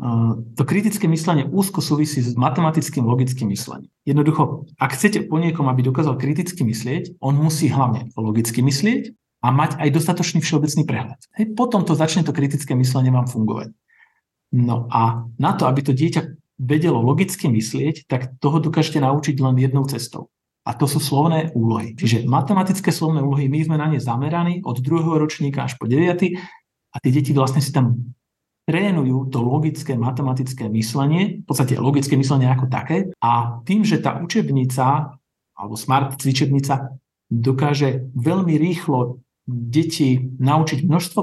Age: 50-69